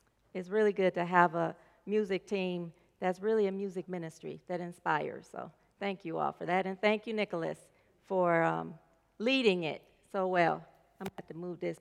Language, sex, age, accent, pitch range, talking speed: English, female, 40-59, American, 185-245 Hz, 195 wpm